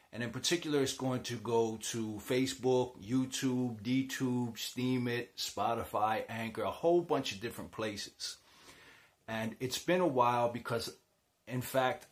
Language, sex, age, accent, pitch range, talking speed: English, male, 30-49, American, 115-135 Hz, 140 wpm